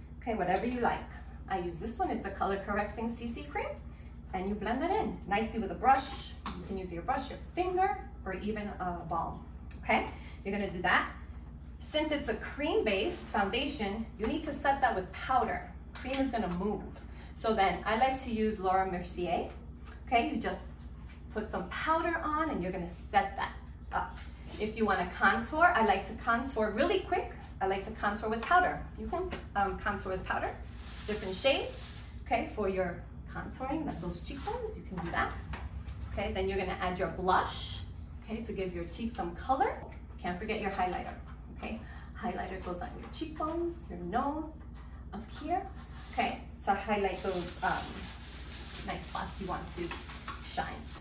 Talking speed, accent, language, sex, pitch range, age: 180 wpm, American, English, female, 185-270 Hz, 30-49